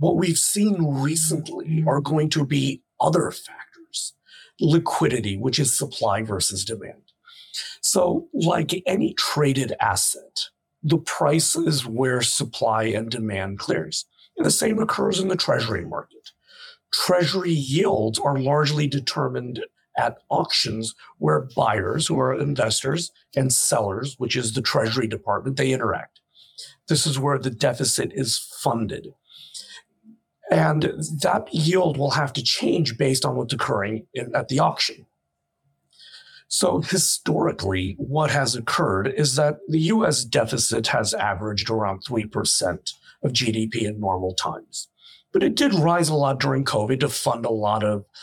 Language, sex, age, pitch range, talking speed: English, male, 50-69, 115-160 Hz, 140 wpm